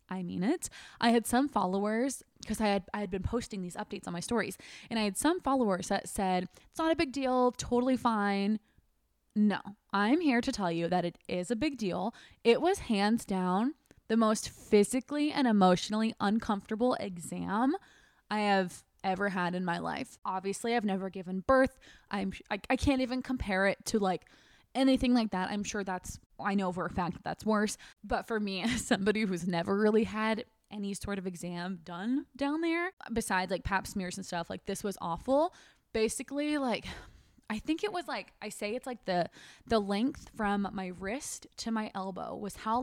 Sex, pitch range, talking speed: female, 190-245 Hz, 195 wpm